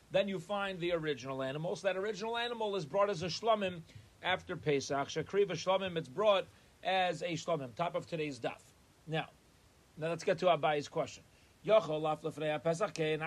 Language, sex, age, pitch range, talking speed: English, male, 30-49, 155-185 Hz, 155 wpm